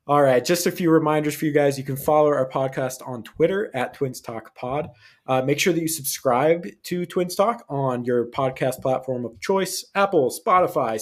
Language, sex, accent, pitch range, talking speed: English, male, American, 120-155 Hz, 200 wpm